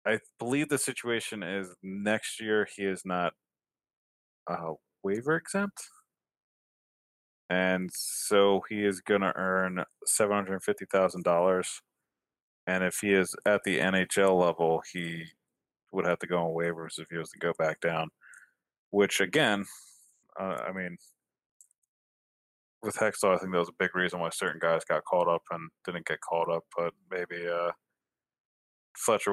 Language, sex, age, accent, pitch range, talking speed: English, male, 20-39, American, 85-95 Hz, 145 wpm